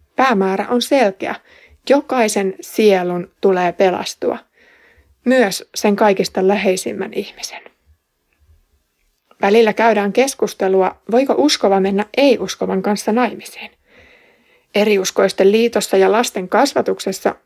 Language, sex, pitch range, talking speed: Finnish, female, 195-250 Hz, 90 wpm